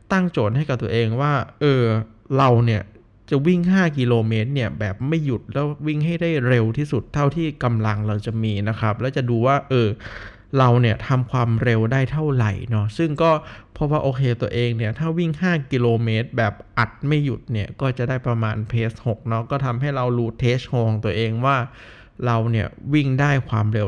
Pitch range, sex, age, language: 110-140 Hz, male, 20-39, Thai